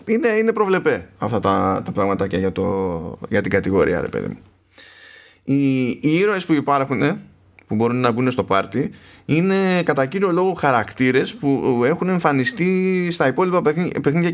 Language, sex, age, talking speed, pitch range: Greek, male, 20-39, 150 wpm, 95-145 Hz